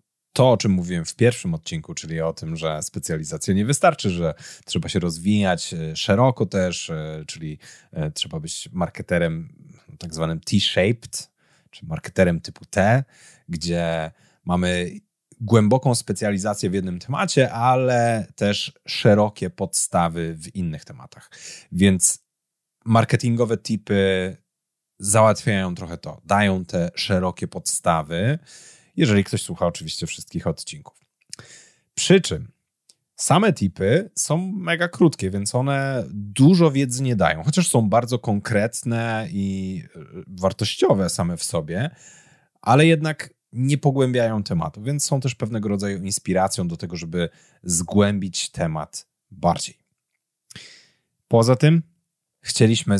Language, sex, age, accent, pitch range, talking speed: Polish, male, 30-49, native, 90-130 Hz, 115 wpm